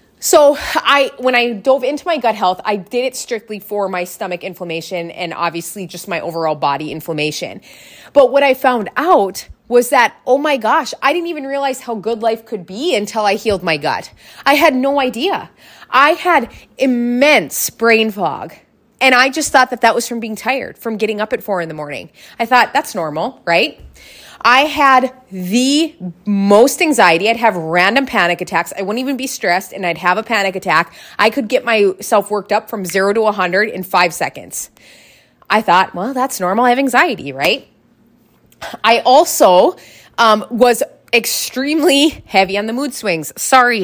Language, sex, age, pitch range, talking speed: English, female, 30-49, 190-255 Hz, 185 wpm